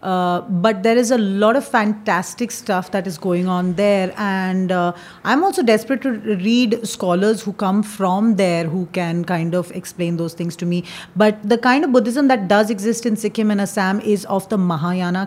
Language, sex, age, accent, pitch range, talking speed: Hindi, female, 30-49, native, 185-235 Hz, 200 wpm